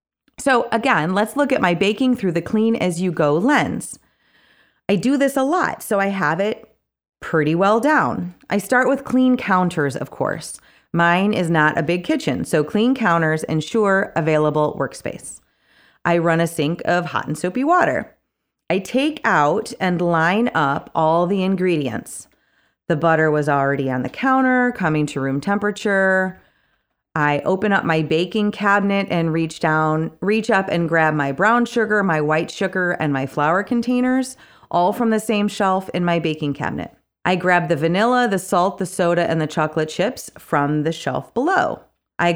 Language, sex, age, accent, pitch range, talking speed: English, female, 30-49, American, 155-215 Hz, 170 wpm